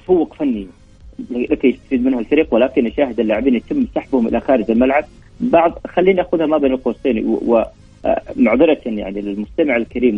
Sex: male